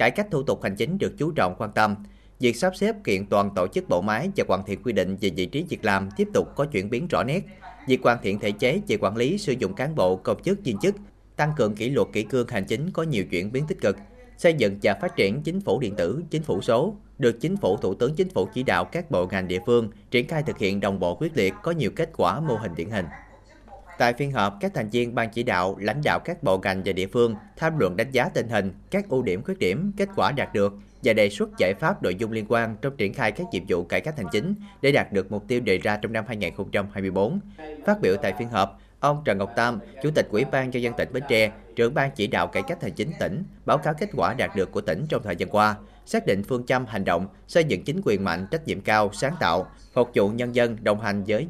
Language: Vietnamese